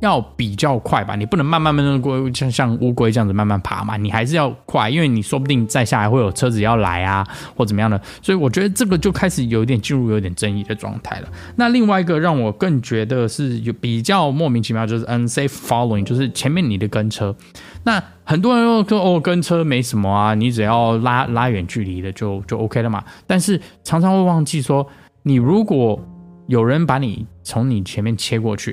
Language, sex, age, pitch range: Chinese, male, 20-39, 110-155 Hz